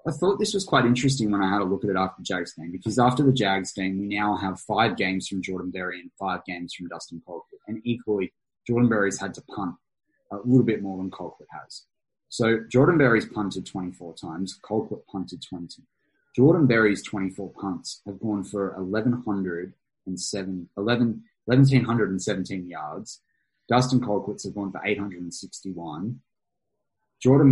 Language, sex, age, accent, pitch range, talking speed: English, male, 20-39, Australian, 95-120 Hz, 185 wpm